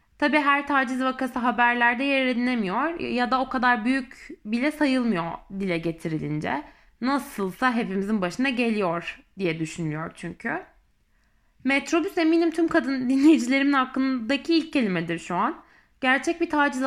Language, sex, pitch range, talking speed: Turkish, female, 220-295 Hz, 130 wpm